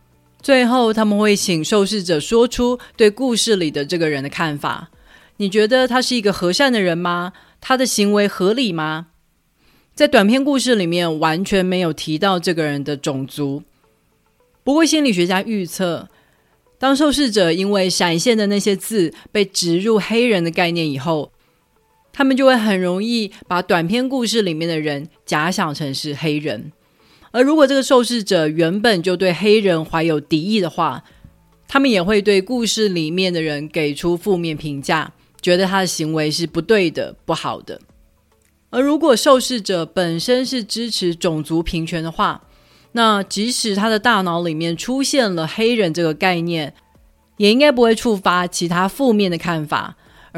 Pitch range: 165-225 Hz